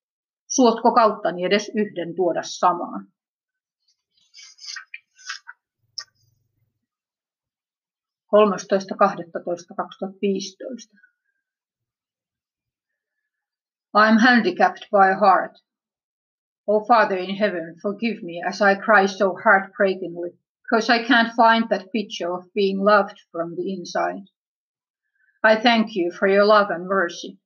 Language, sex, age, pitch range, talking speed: Finnish, female, 30-49, 180-220 Hz, 95 wpm